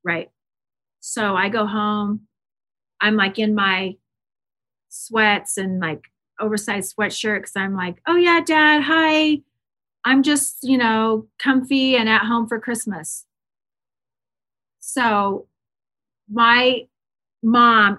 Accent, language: American, English